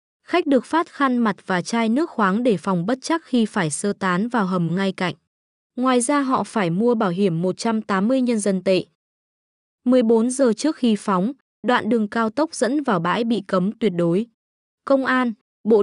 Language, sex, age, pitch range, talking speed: Vietnamese, female, 20-39, 190-250 Hz, 195 wpm